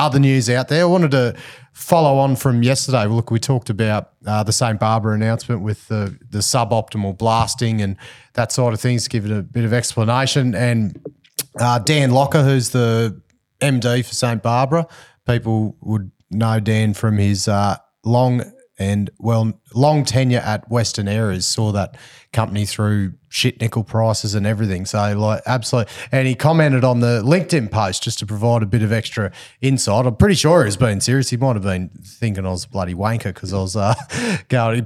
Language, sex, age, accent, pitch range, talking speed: English, male, 30-49, Australian, 105-130 Hz, 190 wpm